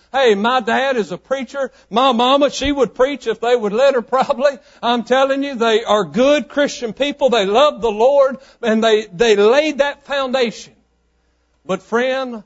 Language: English